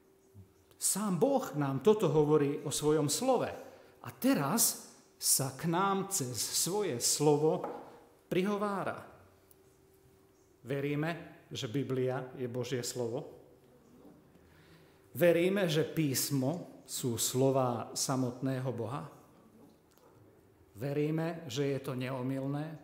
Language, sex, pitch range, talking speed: Slovak, male, 125-155 Hz, 90 wpm